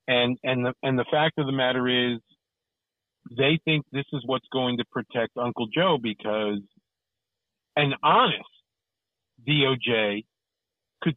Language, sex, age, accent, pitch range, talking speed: English, male, 50-69, American, 120-150 Hz, 135 wpm